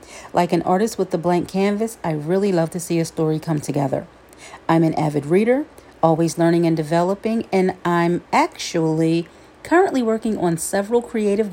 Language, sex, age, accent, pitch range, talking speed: English, female, 40-59, American, 165-225 Hz, 165 wpm